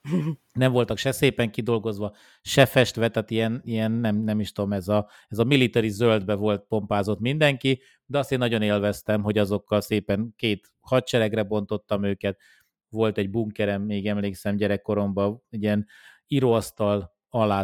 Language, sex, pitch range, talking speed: Hungarian, male, 100-115 Hz, 145 wpm